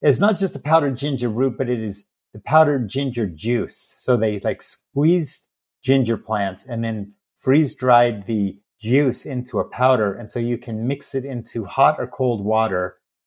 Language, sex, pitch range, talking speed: English, male, 105-125 Hz, 180 wpm